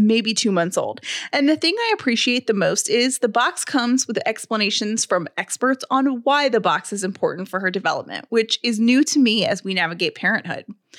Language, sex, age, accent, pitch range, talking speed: English, female, 20-39, American, 210-280 Hz, 200 wpm